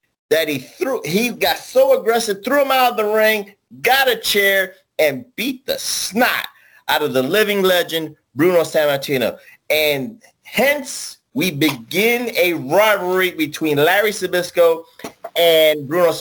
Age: 30-49